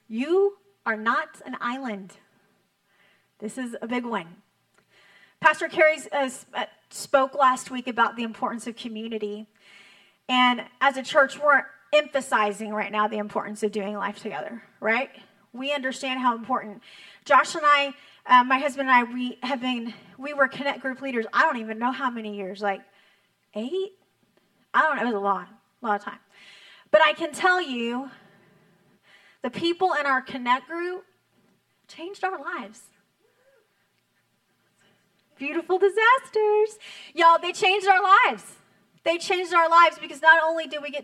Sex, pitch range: female, 200-305 Hz